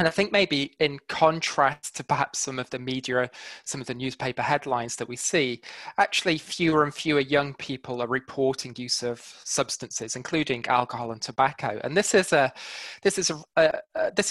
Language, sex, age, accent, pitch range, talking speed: English, male, 20-39, British, 125-155 Hz, 185 wpm